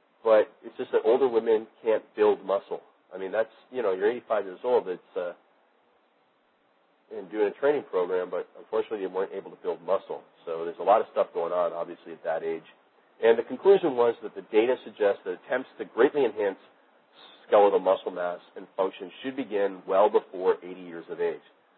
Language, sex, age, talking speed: English, male, 40-59, 195 wpm